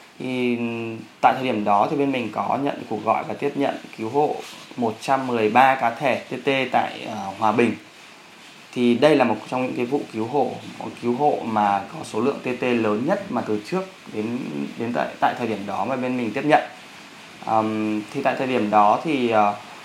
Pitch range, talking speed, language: 105-135 Hz, 205 wpm, Vietnamese